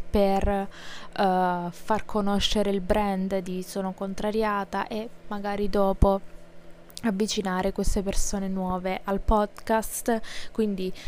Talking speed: 95 wpm